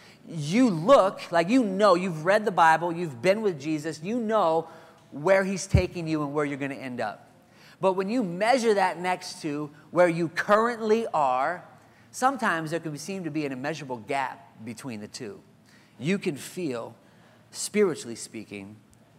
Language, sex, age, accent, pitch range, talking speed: English, male, 40-59, American, 125-185 Hz, 170 wpm